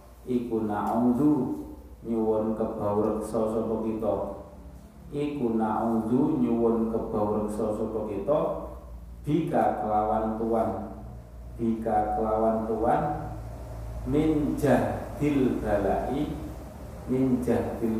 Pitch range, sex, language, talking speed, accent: 100-115 Hz, male, Indonesian, 65 wpm, native